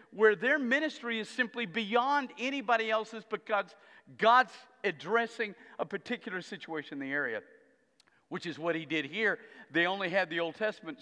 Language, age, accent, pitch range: Russian, 50-69, American, 170-255 Hz